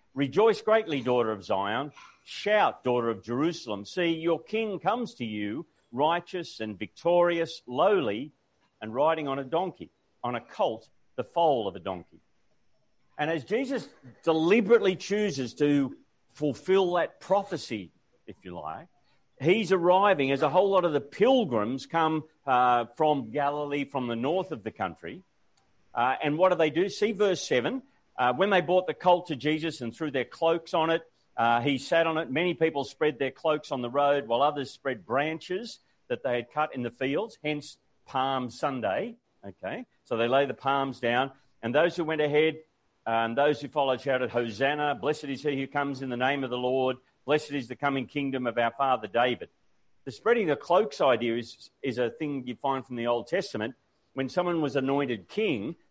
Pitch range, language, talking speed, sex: 125-165 Hz, English, 185 wpm, male